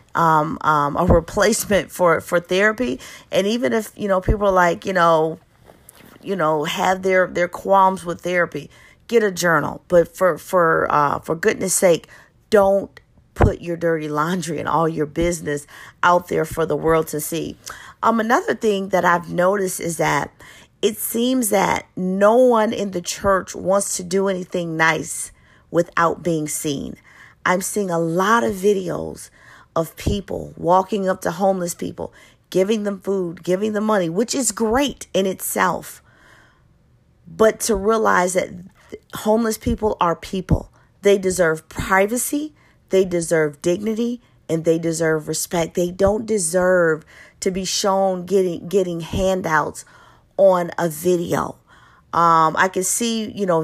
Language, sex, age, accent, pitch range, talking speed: English, female, 40-59, American, 165-195 Hz, 150 wpm